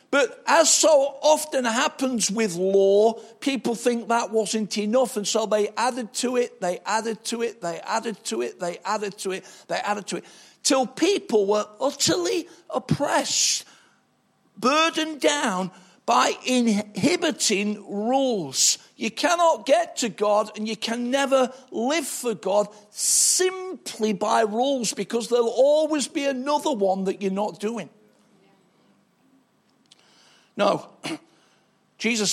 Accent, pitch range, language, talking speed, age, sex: British, 200-270 Hz, English, 135 wpm, 50-69, male